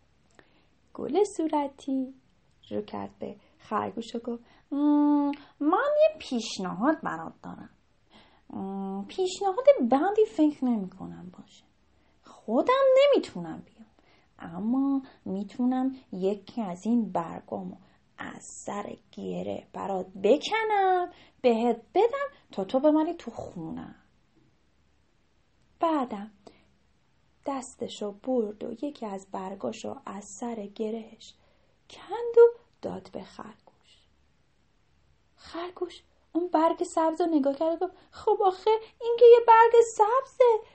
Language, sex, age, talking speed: Persian, female, 30-49, 100 wpm